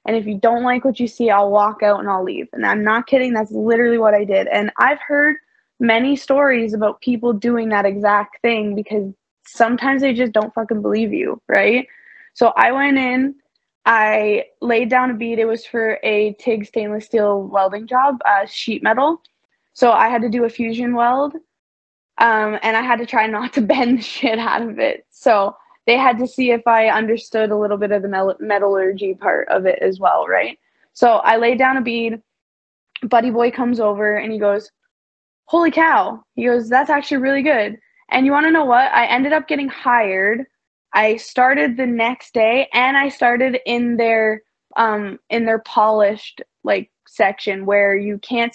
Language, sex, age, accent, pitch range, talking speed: English, female, 20-39, American, 210-255 Hz, 195 wpm